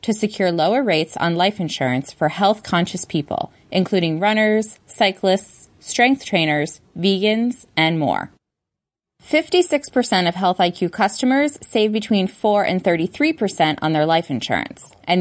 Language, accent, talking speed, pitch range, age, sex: English, American, 130 wpm, 160-220 Hz, 20-39, female